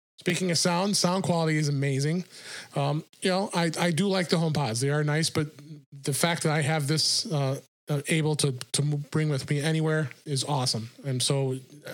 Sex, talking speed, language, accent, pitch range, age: male, 190 wpm, English, American, 140-165 Hz, 30-49